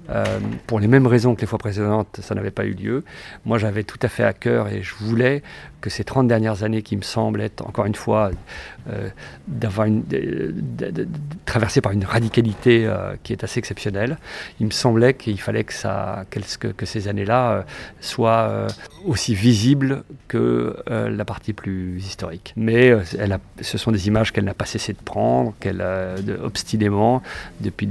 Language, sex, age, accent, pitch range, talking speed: French, male, 40-59, French, 100-115 Hz, 190 wpm